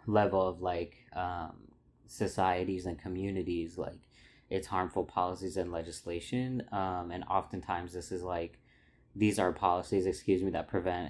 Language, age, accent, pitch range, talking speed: English, 20-39, American, 90-100 Hz, 140 wpm